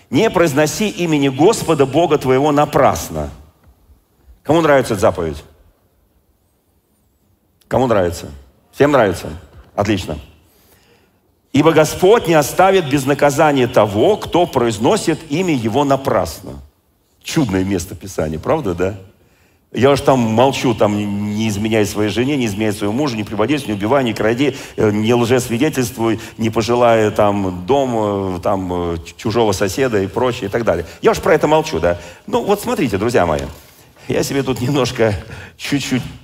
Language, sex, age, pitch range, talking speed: Russian, male, 40-59, 100-155 Hz, 140 wpm